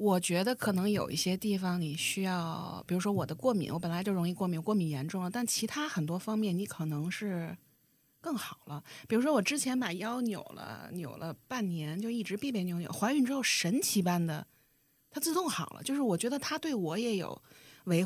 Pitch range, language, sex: 165-235 Hz, Chinese, female